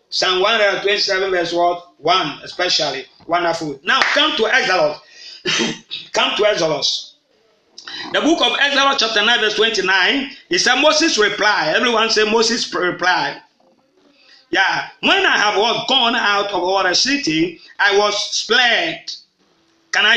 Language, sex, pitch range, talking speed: English, male, 200-280 Hz, 130 wpm